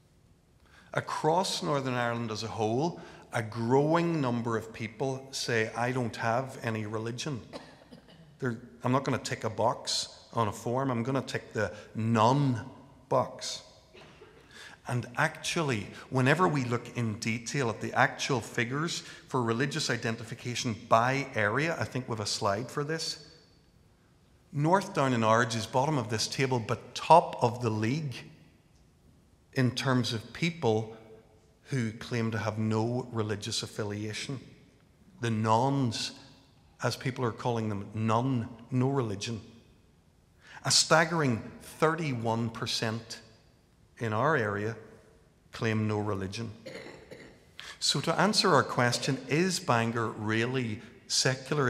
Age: 50-69